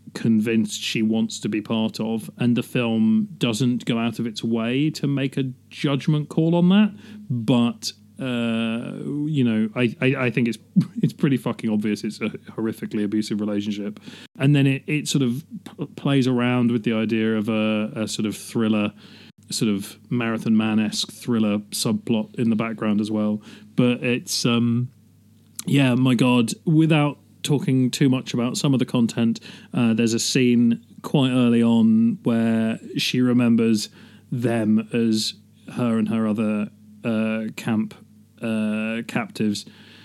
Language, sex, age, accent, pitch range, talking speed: English, male, 30-49, British, 110-125 Hz, 155 wpm